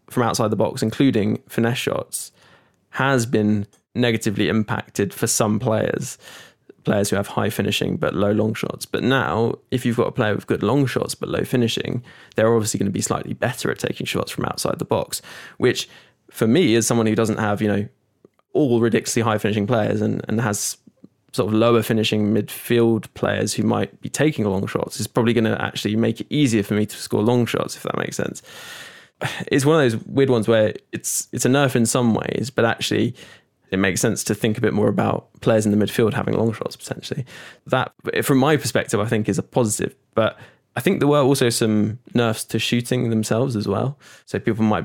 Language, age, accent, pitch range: English, 10-29, British, 105-120 Hz